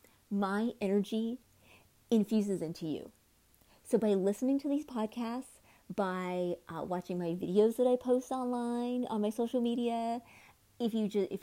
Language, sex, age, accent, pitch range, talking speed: English, female, 30-49, American, 180-245 Hz, 145 wpm